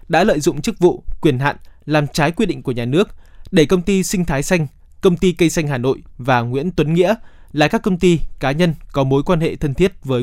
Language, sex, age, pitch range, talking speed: Vietnamese, male, 20-39, 135-175 Hz, 250 wpm